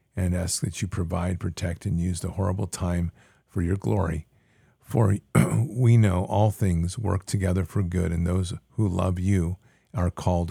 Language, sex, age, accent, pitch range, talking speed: English, male, 50-69, American, 85-105 Hz, 170 wpm